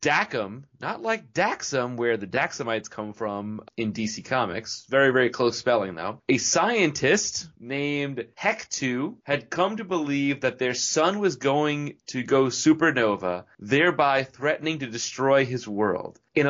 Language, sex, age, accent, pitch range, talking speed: English, male, 30-49, American, 125-155 Hz, 145 wpm